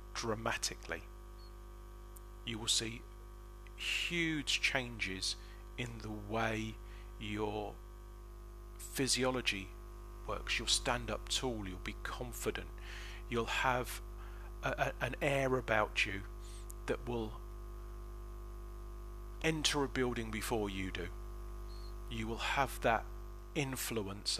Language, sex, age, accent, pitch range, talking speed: English, male, 40-59, British, 110-115 Hz, 95 wpm